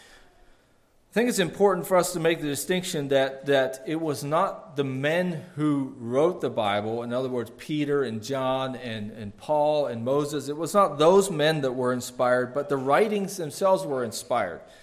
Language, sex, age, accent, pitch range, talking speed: English, male, 40-59, American, 135-175 Hz, 185 wpm